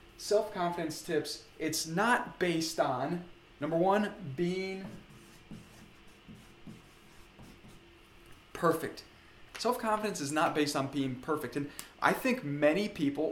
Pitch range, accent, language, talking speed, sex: 140-175 Hz, American, English, 100 wpm, male